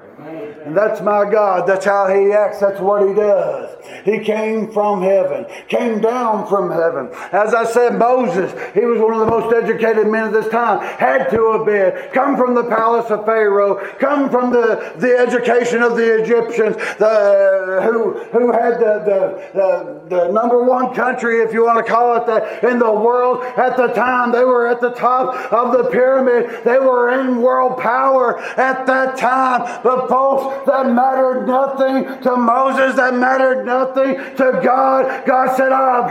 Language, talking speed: English, 180 wpm